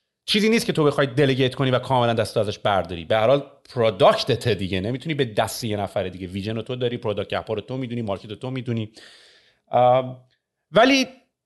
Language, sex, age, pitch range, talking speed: Persian, male, 30-49, 125-185 Hz, 190 wpm